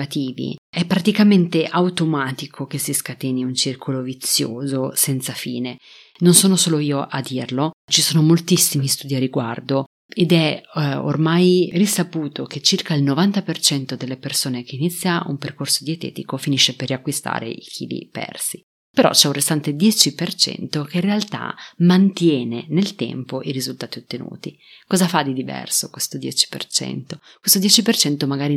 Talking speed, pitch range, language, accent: 145 wpm, 135-175 Hz, Italian, native